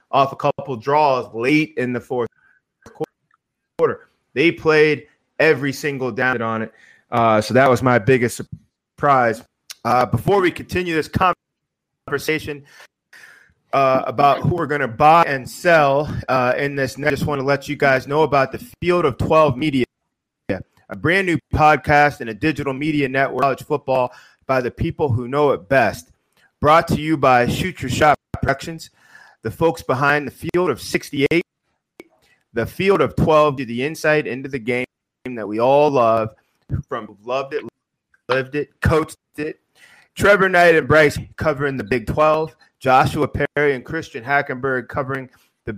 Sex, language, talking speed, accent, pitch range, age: male, English, 165 wpm, American, 130-155 Hz, 30-49